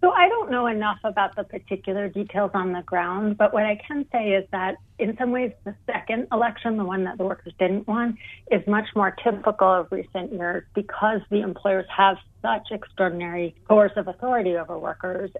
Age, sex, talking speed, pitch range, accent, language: 40-59, female, 190 wpm, 175-210 Hz, American, English